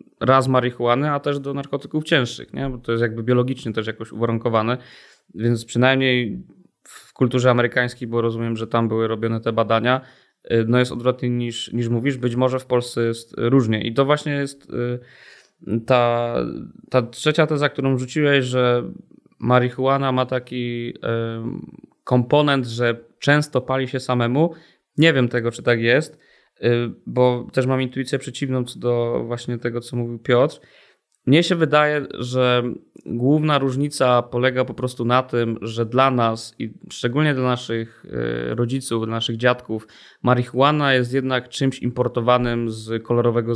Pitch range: 120-135 Hz